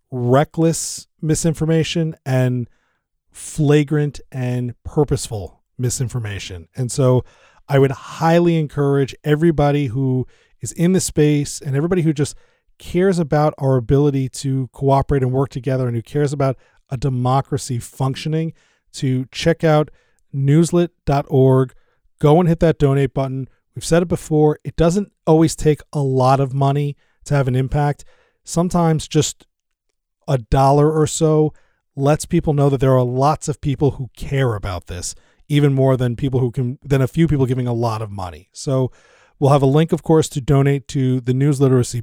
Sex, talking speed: male, 160 wpm